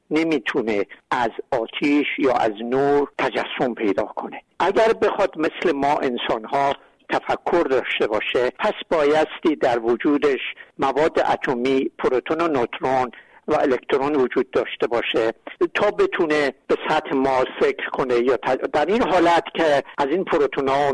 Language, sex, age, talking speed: Persian, male, 60-79, 140 wpm